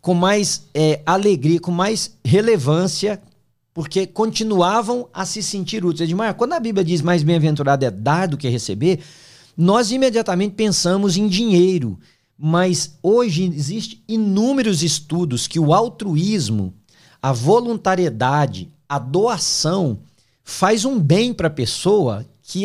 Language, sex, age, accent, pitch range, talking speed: Portuguese, male, 40-59, Brazilian, 150-215 Hz, 125 wpm